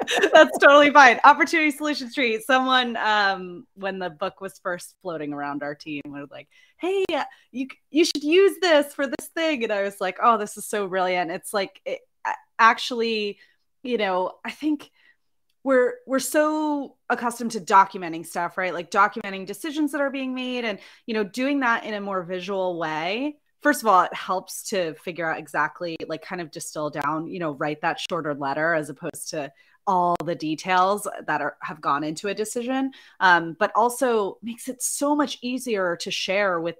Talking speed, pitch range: 185 wpm, 180-255 Hz